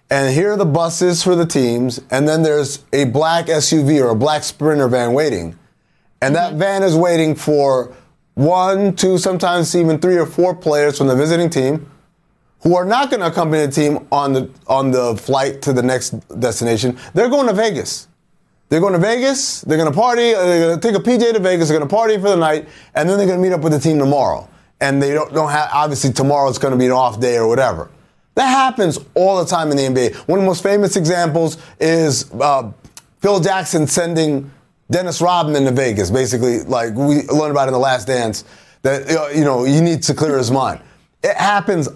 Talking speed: 215 wpm